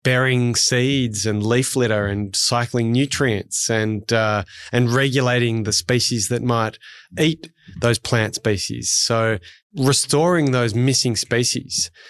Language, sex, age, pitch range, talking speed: English, male, 20-39, 110-130 Hz, 120 wpm